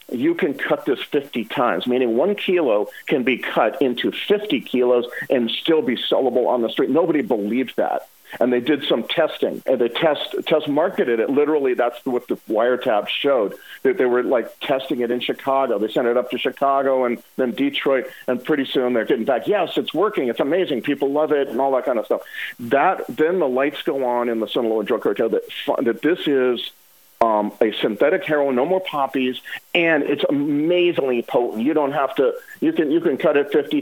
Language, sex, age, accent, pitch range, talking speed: English, male, 50-69, American, 120-200 Hz, 210 wpm